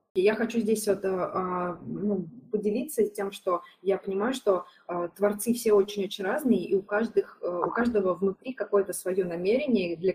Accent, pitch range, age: native, 180-220 Hz, 20-39